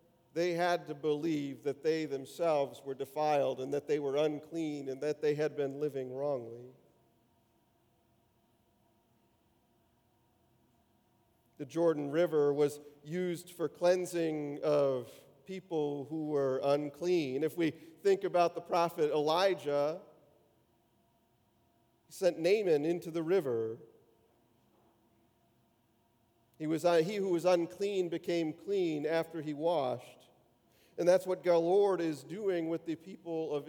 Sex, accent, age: male, American, 40-59